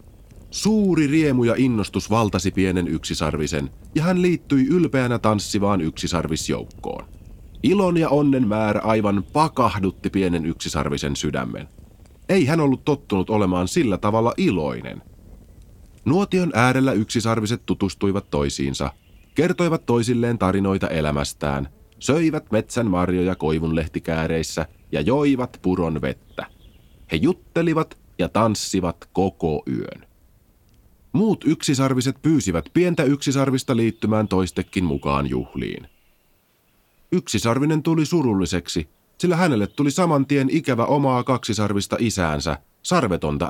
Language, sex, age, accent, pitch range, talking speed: Finnish, male, 30-49, native, 90-140 Hz, 105 wpm